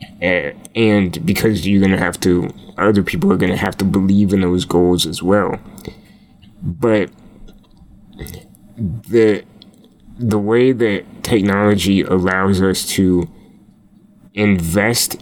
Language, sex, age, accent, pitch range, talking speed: English, male, 20-39, American, 90-105 Hz, 120 wpm